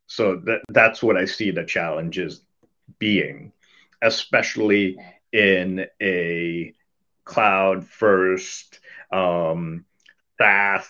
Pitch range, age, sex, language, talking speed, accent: 90-100 Hz, 30-49, male, English, 75 wpm, American